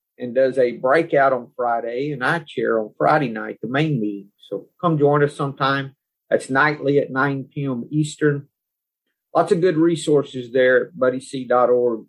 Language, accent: English, American